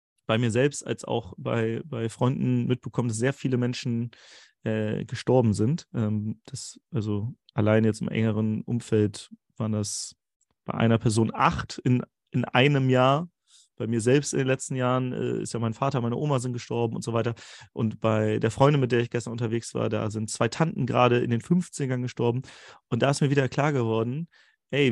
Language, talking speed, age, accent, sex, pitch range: German, 195 wpm, 30-49, German, male, 115-135 Hz